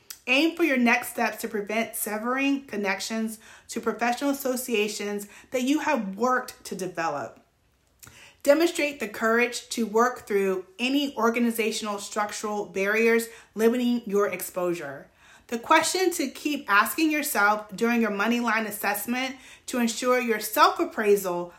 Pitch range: 205-260 Hz